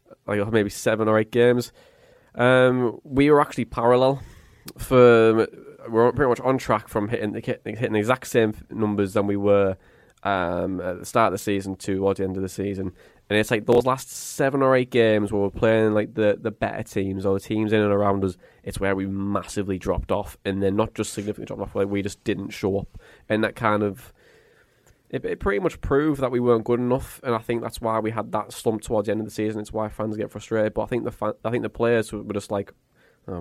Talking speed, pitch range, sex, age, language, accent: 235 wpm, 100-120 Hz, male, 20-39, English, British